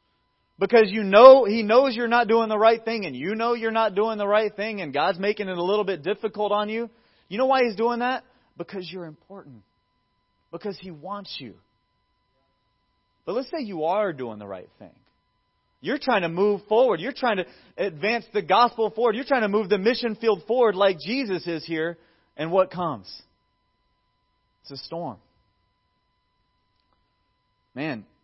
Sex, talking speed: male, 175 wpm